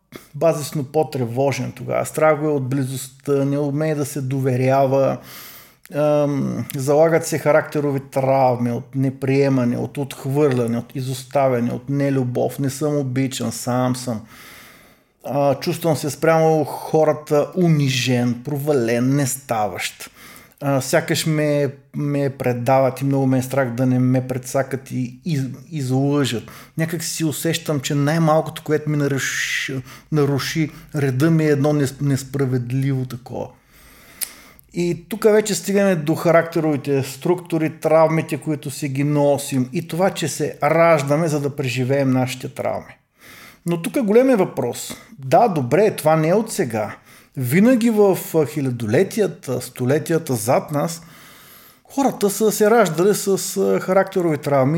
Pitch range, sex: 130-165 Hz, male